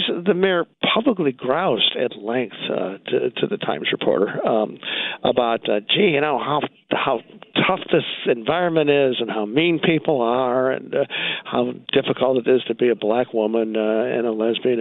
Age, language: 60-79, English